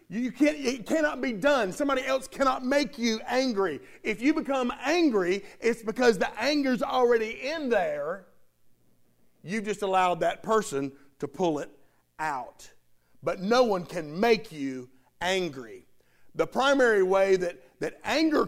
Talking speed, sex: 140 wpm, male